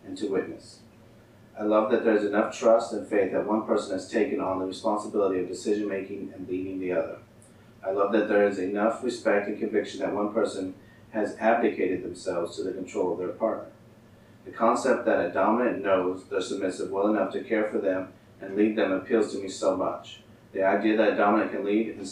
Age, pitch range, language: 30-49, 100-115 Hz, English